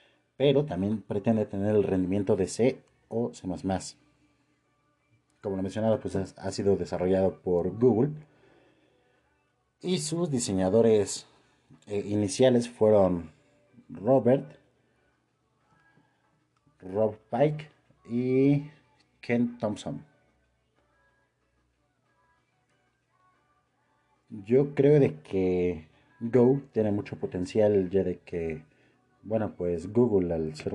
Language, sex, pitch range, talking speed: Spanish, male, 90-125 Hz, 90 wpm